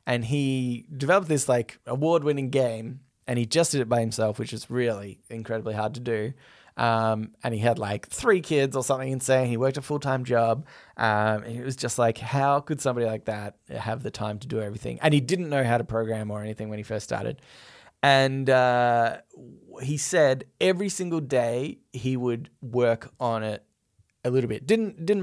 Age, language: 20-39, English